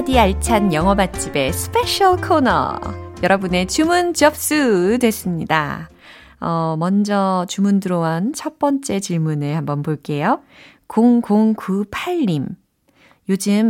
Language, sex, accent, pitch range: Korean, female, native, 170-275 Hz